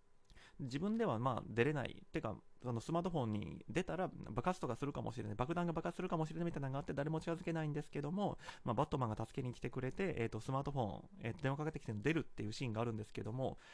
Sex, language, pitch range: male, Japanese, 115-165 Hz